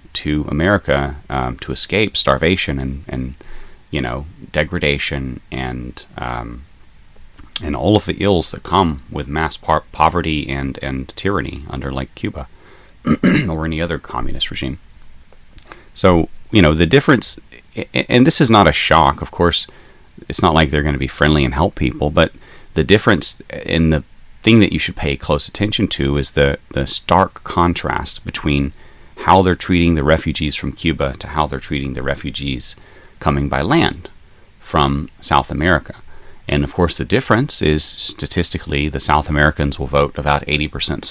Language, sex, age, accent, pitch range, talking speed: English, male, 30-49, American, 70-85 Hz, 160 wpm